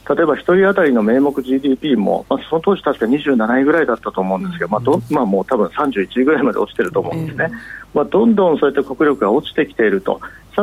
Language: Japanese